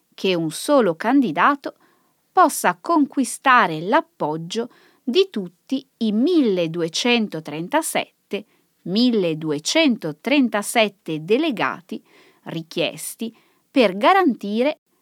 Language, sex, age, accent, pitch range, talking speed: Italian, female, 20-39, native, 170-275 Hz, 60 wpm